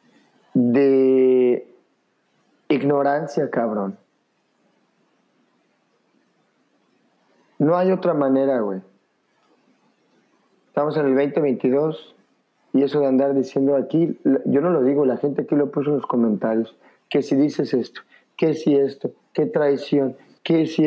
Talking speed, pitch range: 120 wpm, 130-150 Hz